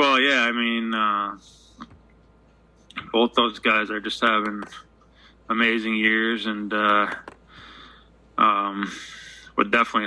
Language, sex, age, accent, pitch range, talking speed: English, male, 20-39, American, 105-115 Hz, 105 wpm